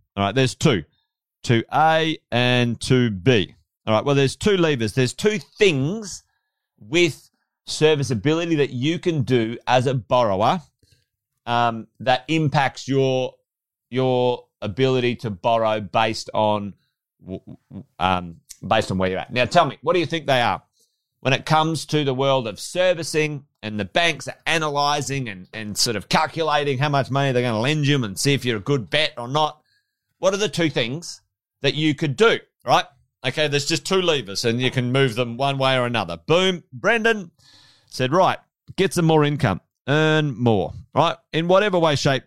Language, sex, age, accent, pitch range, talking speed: English, male, 40-59, Australian, 115-155 Hz, 180 wpm